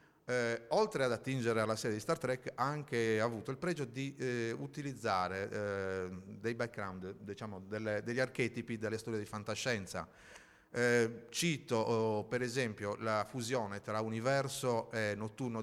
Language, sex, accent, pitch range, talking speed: Italian, male, native, 105-125 Hz, 155 wpm